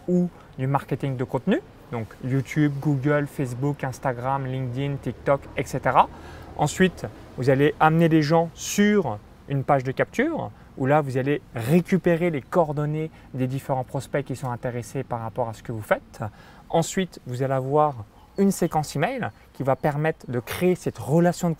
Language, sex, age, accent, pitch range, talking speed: French, male, 30-49, French, 125-160 Hz, 165 wpm